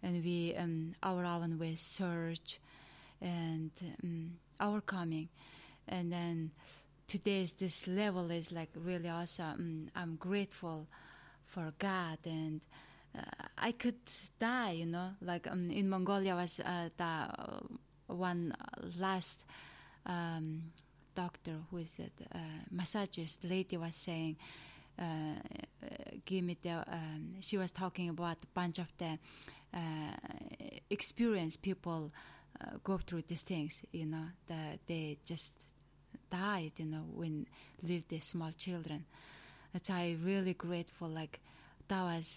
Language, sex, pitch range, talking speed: English, female, 160-185 Hz, 130 wpm